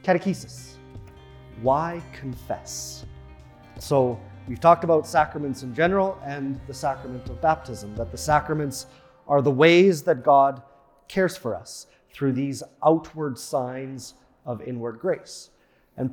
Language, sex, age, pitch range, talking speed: English, male, 30-49, 125-160 Hz, 125 wpm